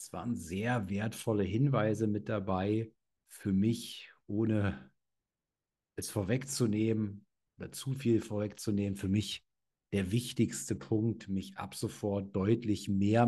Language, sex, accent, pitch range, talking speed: German, male, German, 105-120 Hz, 115 wpm